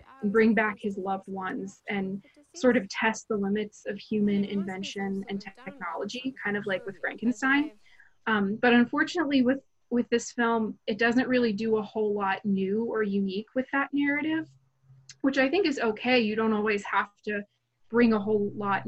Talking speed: 175 wpm